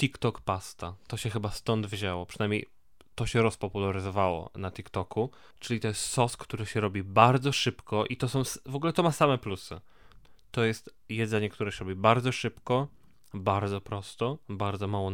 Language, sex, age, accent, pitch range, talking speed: Polish, male, 20-39, native, 100-125 Hz, 170 wpm